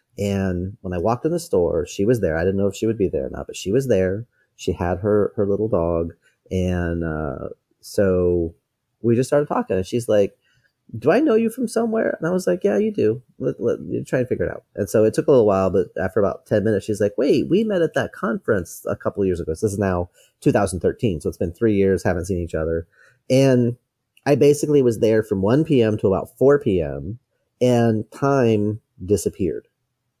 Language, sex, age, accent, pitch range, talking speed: English, male, 30-49, American, 95-125 Hz, 230 wpm